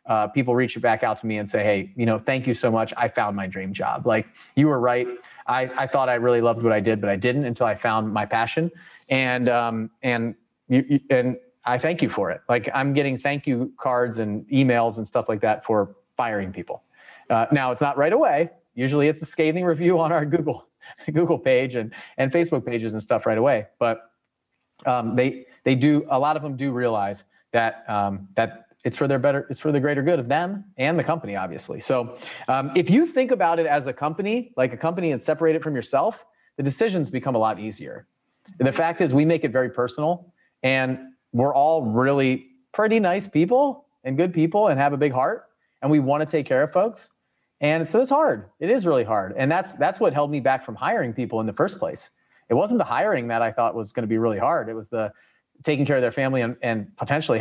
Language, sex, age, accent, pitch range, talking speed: English, male, 30-49, American, 115-155 Hz, 235 wpm